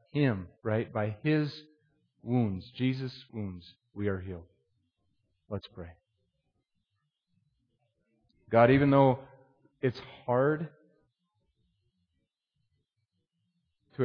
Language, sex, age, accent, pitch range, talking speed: English, male, 40-59, American, 100-125 Hz, 75 wpm